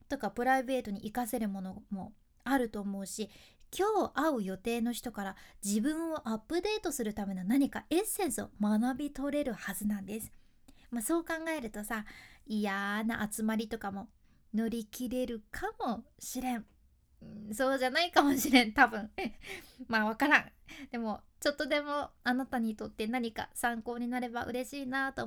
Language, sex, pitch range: Japanese, female, 215-290 Hz